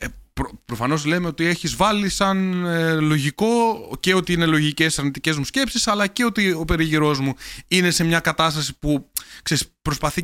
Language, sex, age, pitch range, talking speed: Greek, male, 30-49, 115-165 Hz, 150 wpm